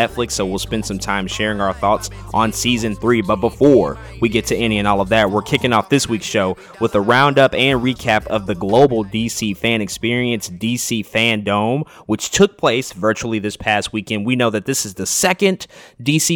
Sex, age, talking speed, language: male, 20-39, 205 wpm, English